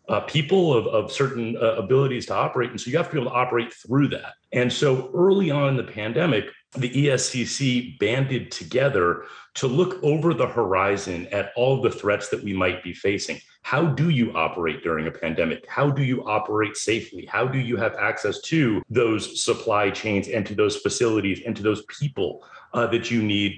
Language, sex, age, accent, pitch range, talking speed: English, male, 40-59, American, 100-135 Hz, 200 wpm